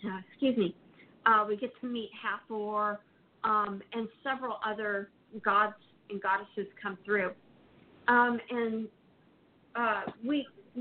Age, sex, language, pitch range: 40-59, female, English, 205-245 Hz